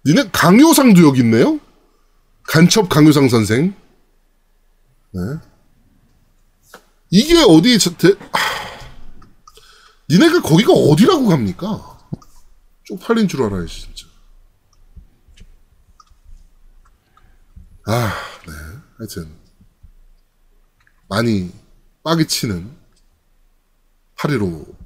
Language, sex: Korean, male